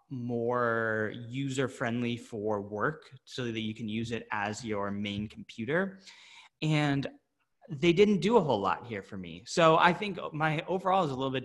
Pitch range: 115-160 Hz